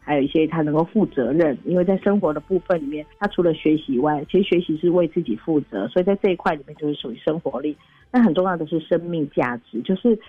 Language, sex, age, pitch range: Chinese, female, 40-59, 145-185 Hz